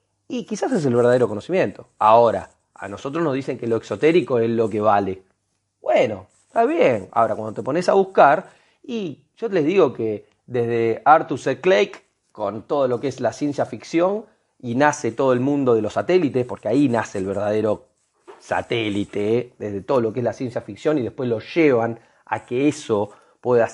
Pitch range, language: 115-170 Hz, Spanish